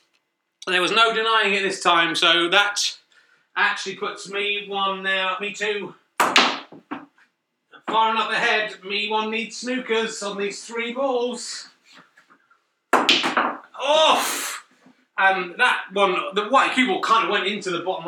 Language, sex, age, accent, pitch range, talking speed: English, male, 30-49, British, 185-225 Hz, 140 wpm